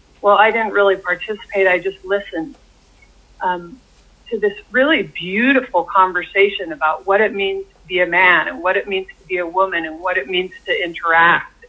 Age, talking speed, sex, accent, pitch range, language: 40-59, 185 wpm, female, American, 175-225 Hz, English